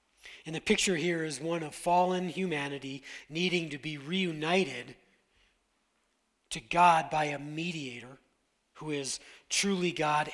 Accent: American